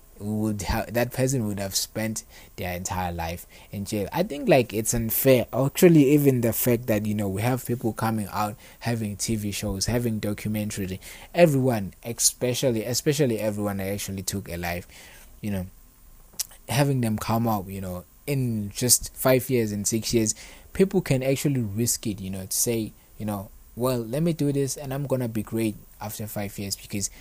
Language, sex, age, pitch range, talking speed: English, male, 20-39, 95-120 Hz, 185 wpm